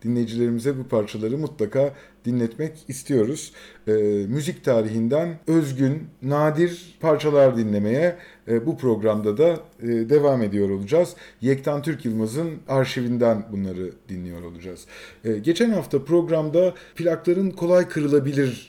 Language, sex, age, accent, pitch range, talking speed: Turkish, male, 50-69, native, 115-160 Hz, 110 wpm